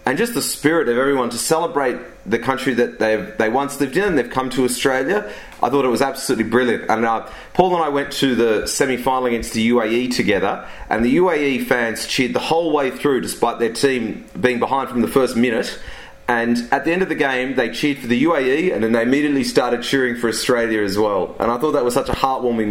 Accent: Australian